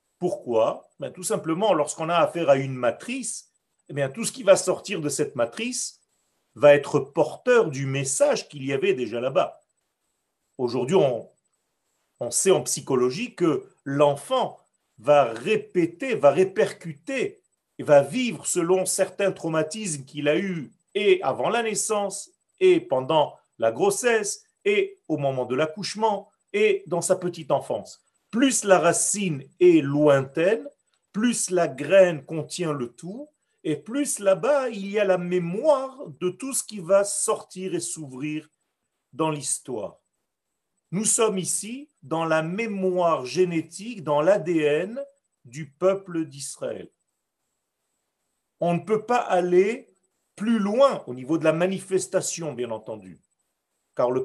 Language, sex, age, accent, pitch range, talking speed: French, male, 40-59, French, 150-220 Hz, 140 wpm